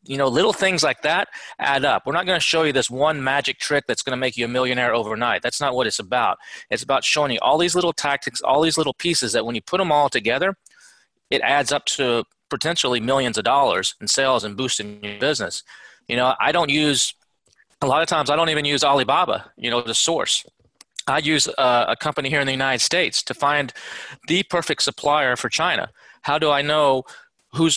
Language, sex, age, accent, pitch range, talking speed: English, male, 30-49, American, 125-150 Hz, 225 wpm